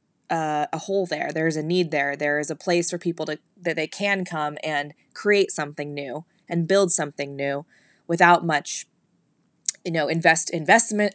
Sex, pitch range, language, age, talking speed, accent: female, 160-190 Hz, English, 20-39, 185 wpm, American